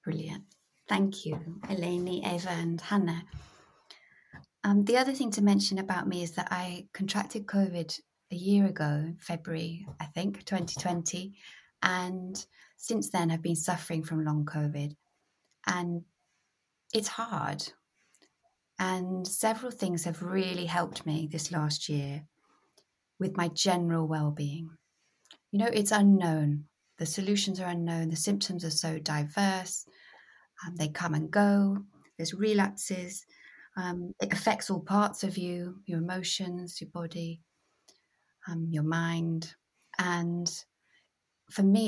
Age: 30-49